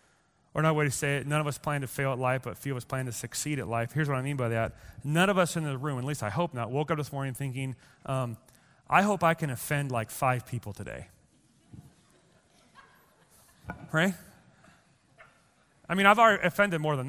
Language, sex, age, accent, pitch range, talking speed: English, male, 30-49, American, 130-170 Hz, 225 wpm